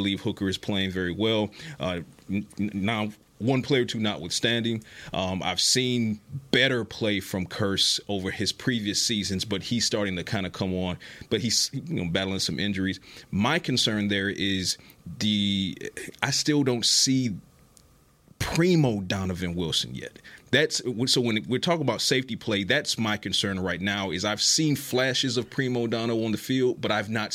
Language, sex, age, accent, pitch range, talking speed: English, male, 30-49, American, 95-120 Hz, 175 wpm